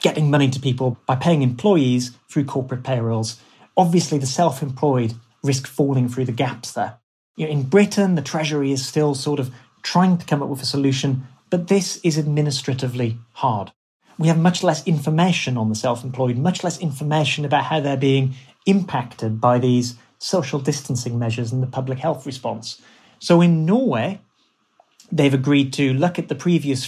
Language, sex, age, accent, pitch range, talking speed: English, male, 30-49, British, 125-160 Hz, 165 wpm